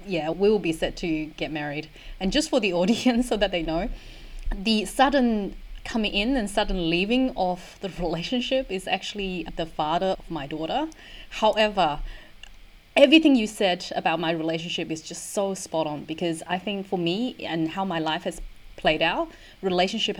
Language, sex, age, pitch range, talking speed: English, female, 20-39, 160-205 Hz, 175 wpm